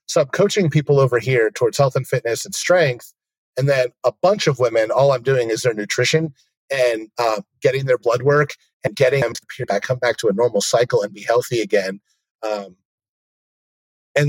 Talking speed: 200 wpm